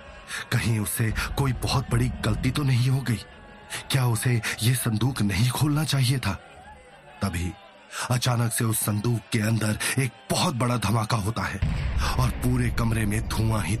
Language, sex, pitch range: Hindi, male, 100-120 Hz